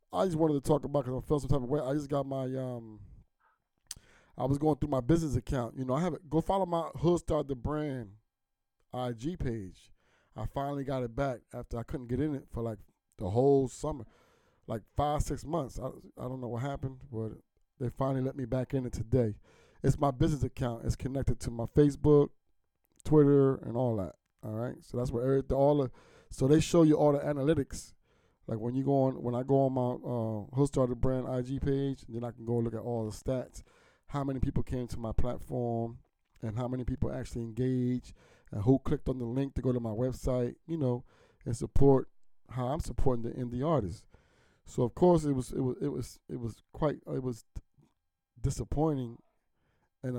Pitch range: 120-140 Hz